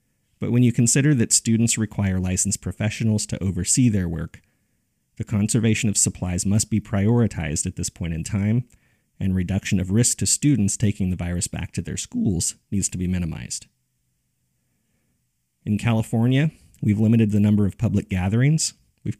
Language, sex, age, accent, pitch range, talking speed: English, male, 30-49, American, 95-120 Hz, 165 wpm